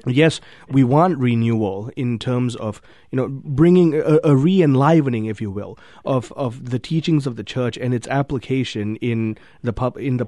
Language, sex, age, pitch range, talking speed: English, male, 30-49, 115-150 Hz, 180 wpm